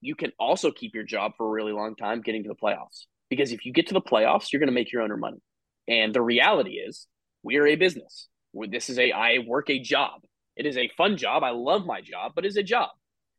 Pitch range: 125-185 Hz